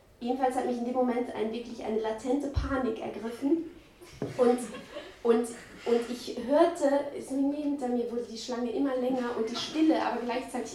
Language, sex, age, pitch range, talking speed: German, female, 20-39, 235-305 Hz, 185 wpm